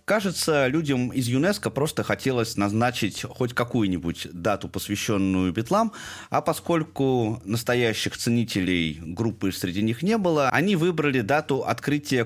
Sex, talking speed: male, 120 wpm